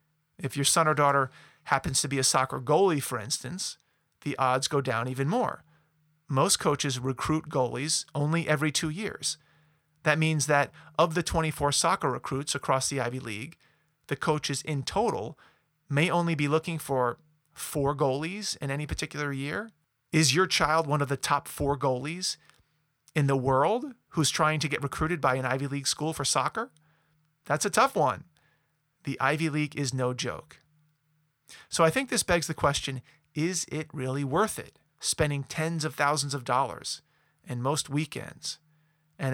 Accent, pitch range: American, 135-160 Hz